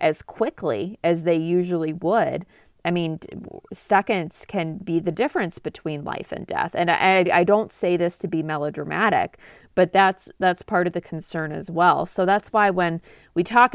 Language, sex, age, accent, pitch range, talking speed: English, female, 30-49, American, 160-185 Hz, 180 wpm